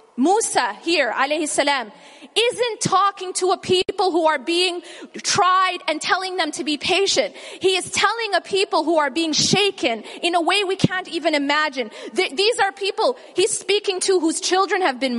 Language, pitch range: English, 295-380 Hz